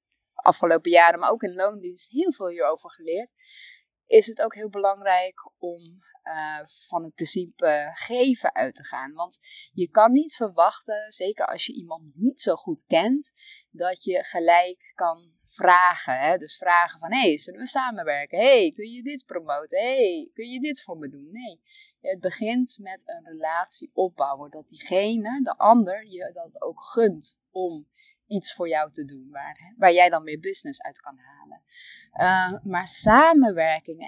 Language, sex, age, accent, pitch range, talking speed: Dutch, female, 20-39, Dutch, 175-260 Hz, 165 wpm